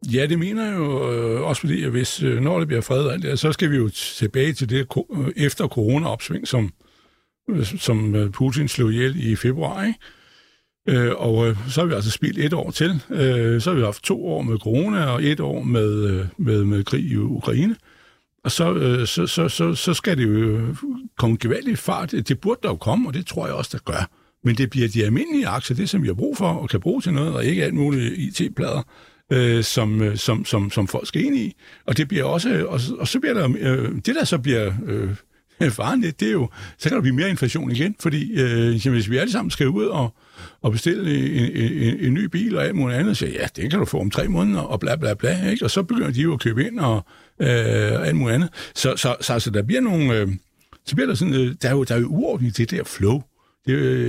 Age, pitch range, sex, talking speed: 60-79, 115-155 Hz, male, 230 wpm